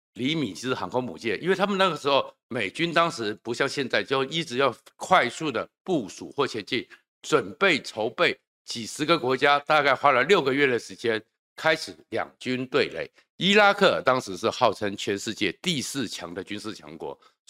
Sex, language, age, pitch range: male, Chinese, 50-69, 115-160 Hz